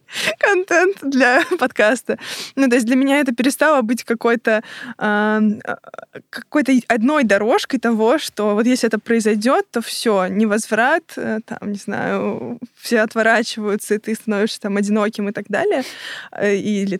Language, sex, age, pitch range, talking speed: Russian, female, 20-39, 210-245 Hz, 140 wpm